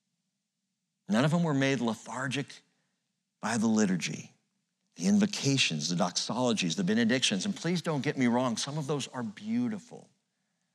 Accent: American